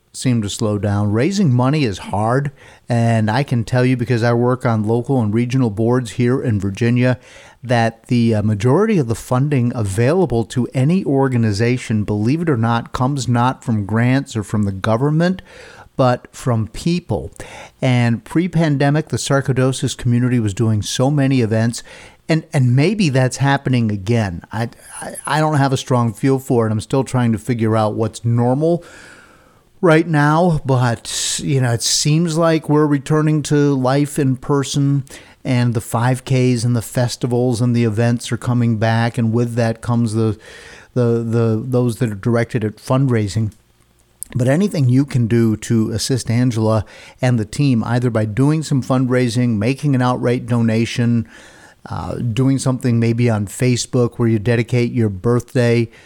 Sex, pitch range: male, 115-135 Hz